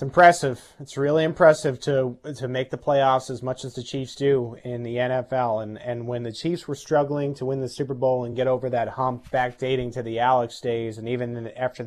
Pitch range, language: 120-150 Hz, English